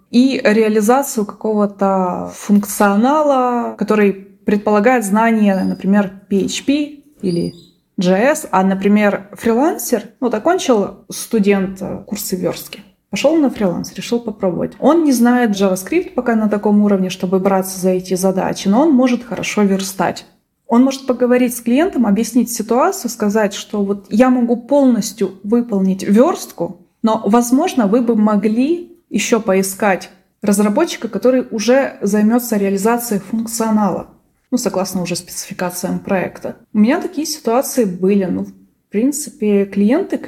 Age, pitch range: 20-39, 195-245 Hz